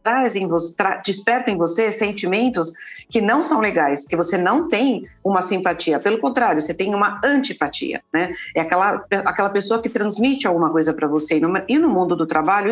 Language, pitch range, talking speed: Portuguese, 180-220 Hz, 180 wpm